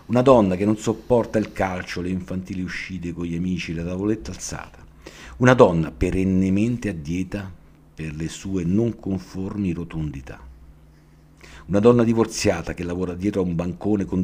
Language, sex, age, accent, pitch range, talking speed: Italian, male, 50-69, native, 80-110 Hz, 150 wpm